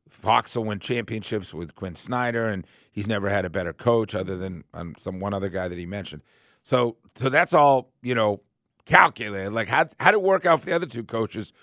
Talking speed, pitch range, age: 220 wpm, 100-130 Hz, 50-69